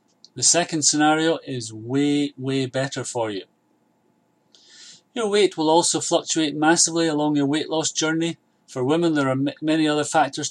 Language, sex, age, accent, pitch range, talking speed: English, male, 30-49, British, 130-150 Hz, 155 wpm